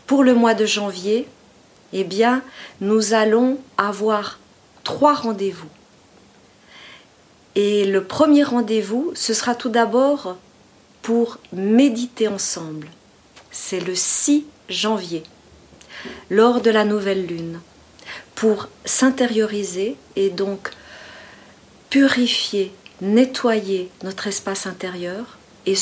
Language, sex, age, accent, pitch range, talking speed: French, female, 40-59, French, 195-245 Hz, 100 wpm